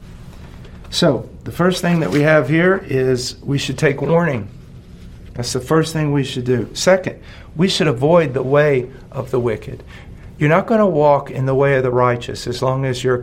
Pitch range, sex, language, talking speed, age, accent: 95-150 Hz, male, English, 200 wpm, 50-69, American